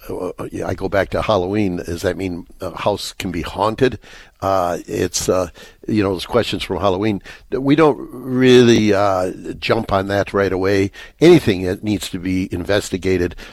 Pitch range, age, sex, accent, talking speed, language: 90-105 Hz, 60-79, male, American, 165 wpm, English